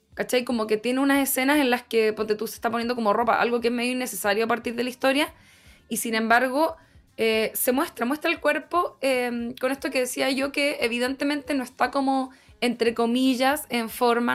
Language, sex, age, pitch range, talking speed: Spanish, female, 20-39, 220-275 Hz, 210 wpm